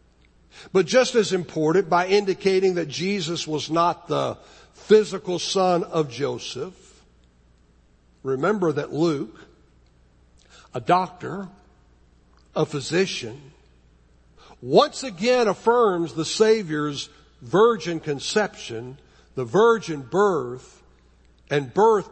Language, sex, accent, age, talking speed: English, male, American, 60-79, 90 wpm